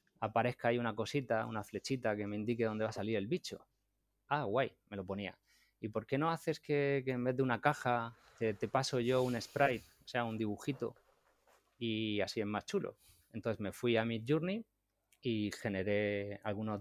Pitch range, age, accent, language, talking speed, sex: 105-135 Hz, 20-39, Spanish, Spanish, 200 wpm, male